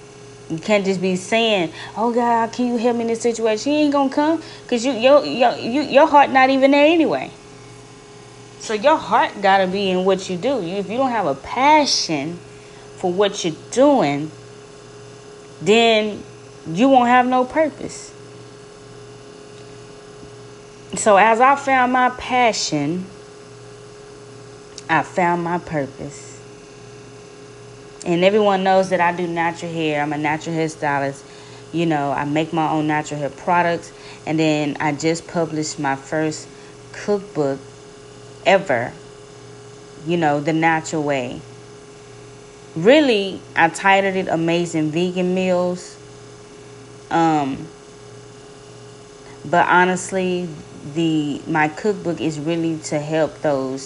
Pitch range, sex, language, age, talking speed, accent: 140-190 Hz, female, English, 20-39, 135 wpm, American